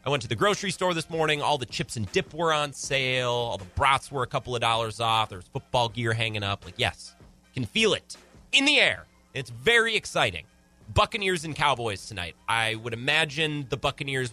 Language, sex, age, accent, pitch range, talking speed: English, male, 30-49, American, 110-155 Hz, 215 wpm